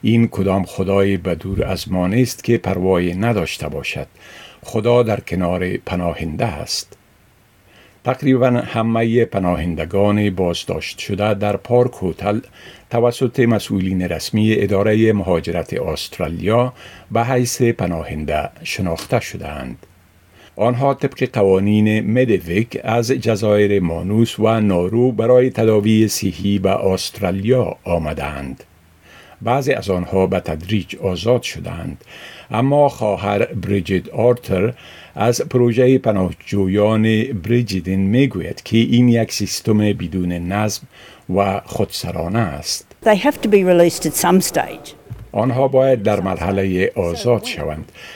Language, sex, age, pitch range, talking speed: Persian, male, 50-69, 95-120 Hz, 100 wpm